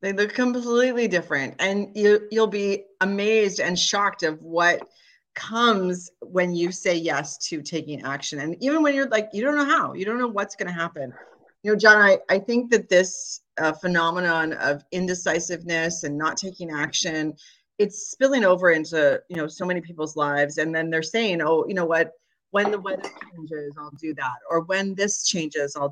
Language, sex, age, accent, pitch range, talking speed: English, female, 30-49, American, 160-205 Hz, 195 wpm